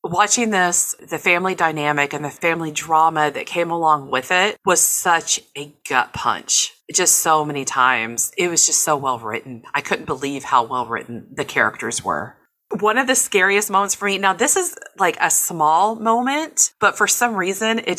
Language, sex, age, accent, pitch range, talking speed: English, female, 30-49, American, 145-185 Hz, 190 wpm